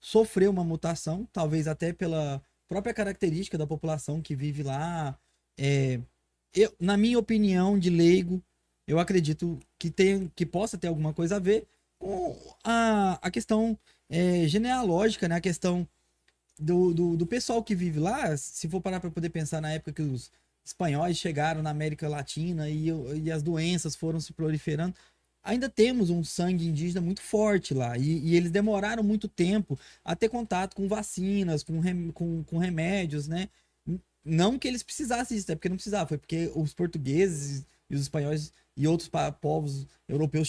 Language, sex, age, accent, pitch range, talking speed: Portuguese, male, 20-39, Brazilian, 155-195 Hz, 170 wpm